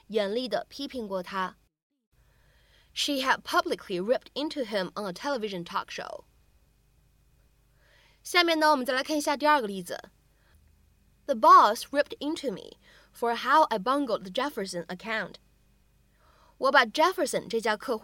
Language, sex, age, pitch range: Chinese, female, 20-39, 205-305 Hz